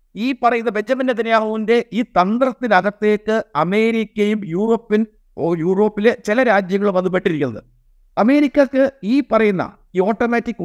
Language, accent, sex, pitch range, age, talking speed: Malayalam, native, male, 195-235 Hz, 50-69, 90 wpm